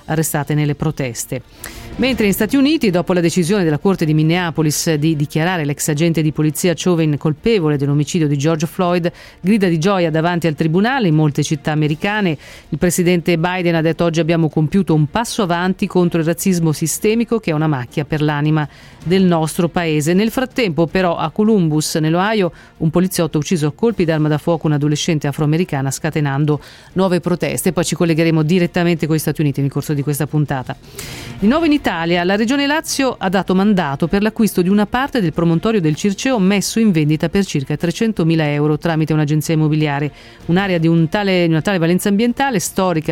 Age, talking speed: 40-59, 185 wpm